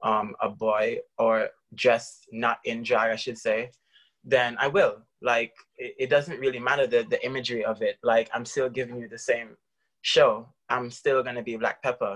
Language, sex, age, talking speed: English, male, 20-39, 190 wpm